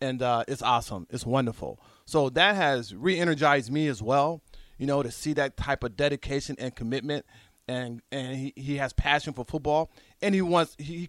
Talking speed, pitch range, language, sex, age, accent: 185 wpm, 120-145 Hz, English, male, 30-49, American